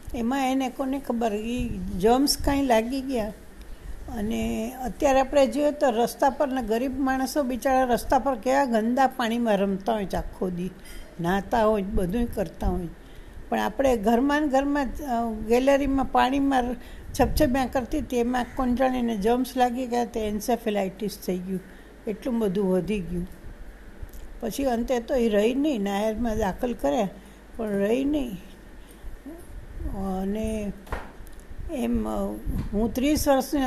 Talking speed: 130 wpm